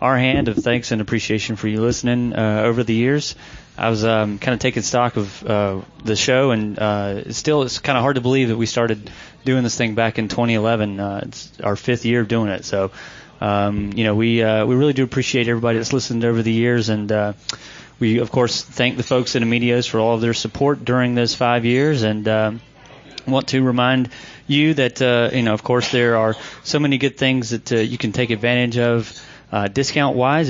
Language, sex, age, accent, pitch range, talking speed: English, male, 30-49, American, 110-125 Hz, 225 wpm